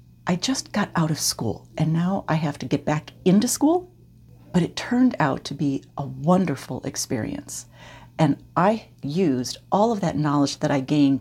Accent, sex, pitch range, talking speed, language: American, female, 135-170 Hz, 180 wpm, English